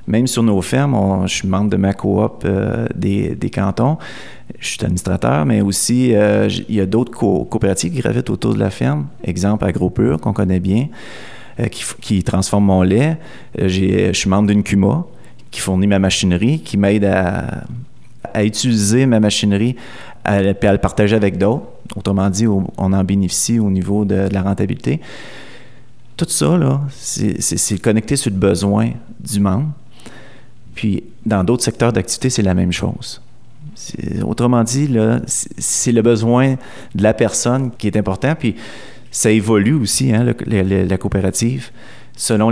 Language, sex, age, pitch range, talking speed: French, male, 30-49, 100-120 Hz, 175 wpm